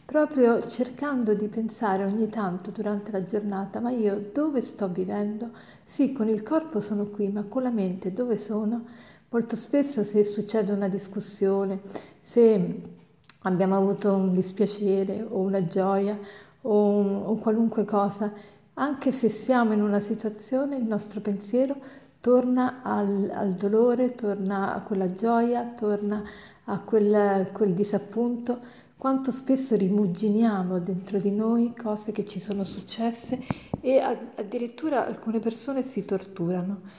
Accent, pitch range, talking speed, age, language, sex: native, 200-235 Hz, 135 wpm, 50-69, Italian, female